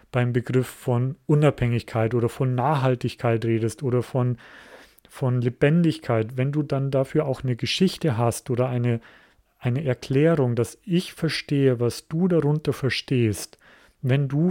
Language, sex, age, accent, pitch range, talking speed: German, male, 40-59, German, 125-150 Hz, 135 wpm